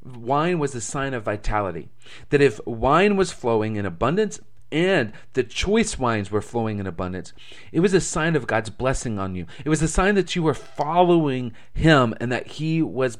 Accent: American